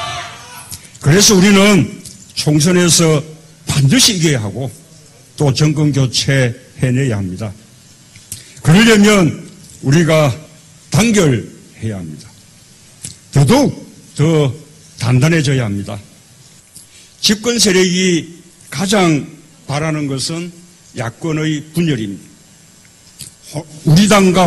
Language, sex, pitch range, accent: Korean, male, 130-170 Hz, native